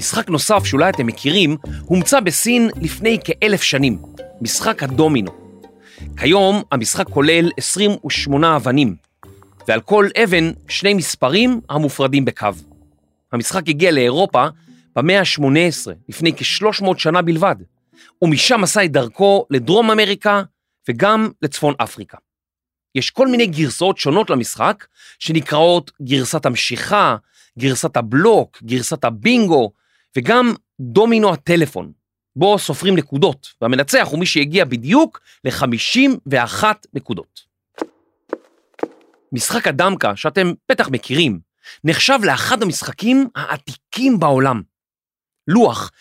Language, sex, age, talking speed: Hebrew, male, 40-59, 105 wpm